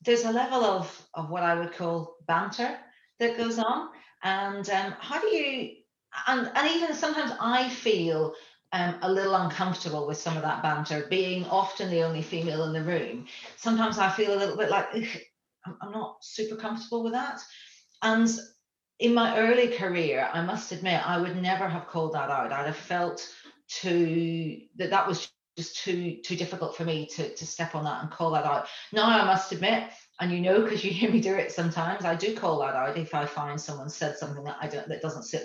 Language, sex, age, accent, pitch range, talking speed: English, female, 40-59, British, 165-225 Hz, 205 wpm